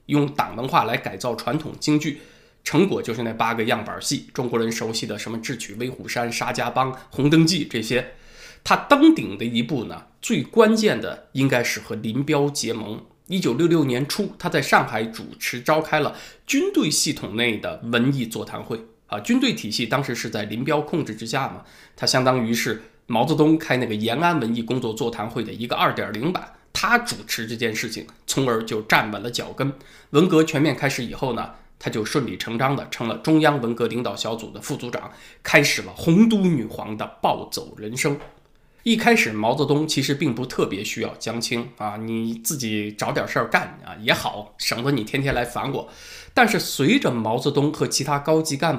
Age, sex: 20-39, male